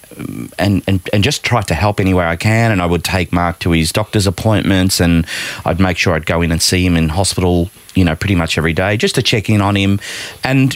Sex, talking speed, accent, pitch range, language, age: male, 245 wpm, Australian, 80-105 Hz, English, 30-49